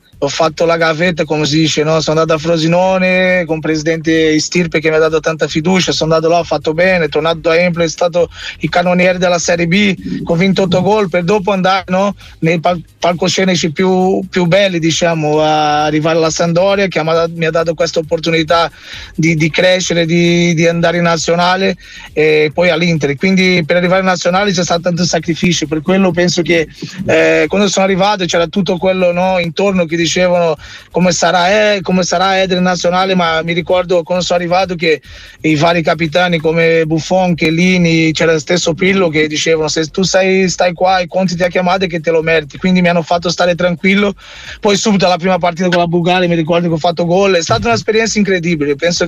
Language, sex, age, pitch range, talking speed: Italian, male, 20-39, 165-185 Hz, 200 wpm